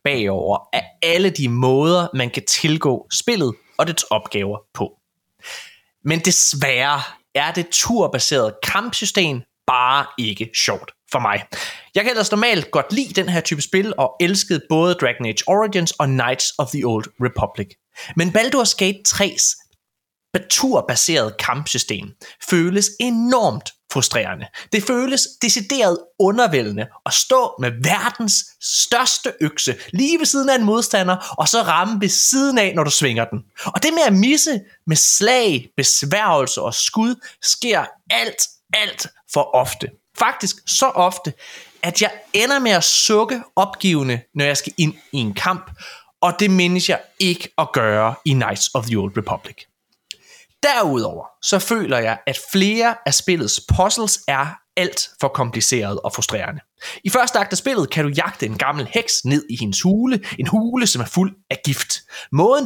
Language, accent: Danish, native